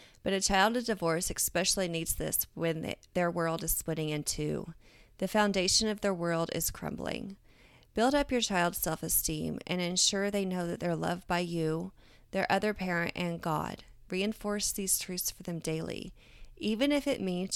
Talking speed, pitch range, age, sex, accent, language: 175 wpm, 165-205 Hz, 30-49, female, American, English